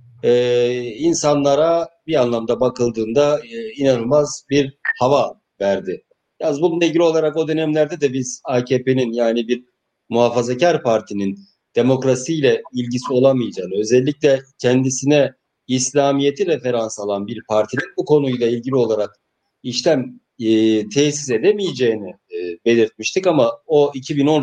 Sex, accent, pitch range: male, Turkish, 115-145 Hz